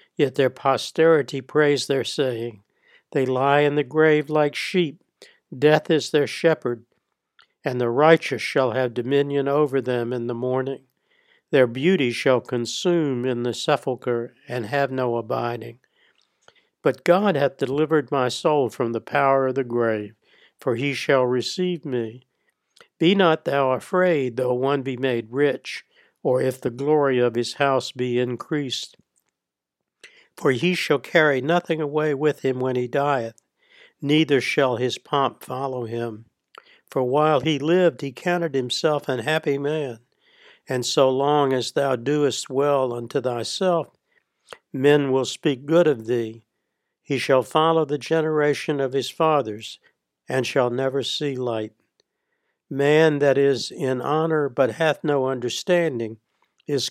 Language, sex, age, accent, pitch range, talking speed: English, male, 60-79, American, 125-150 Hz, 145 wpm